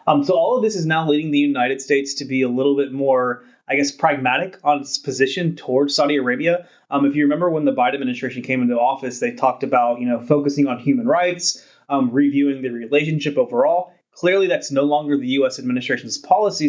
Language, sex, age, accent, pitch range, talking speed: English, male, 20-39, American, 130-155 Hz, 210 wpm